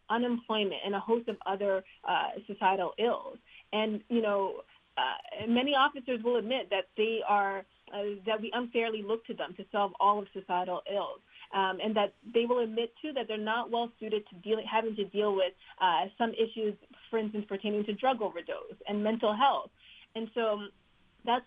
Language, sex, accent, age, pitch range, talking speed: English, female, American, 30-49, 195-230 Hz, 185 wpm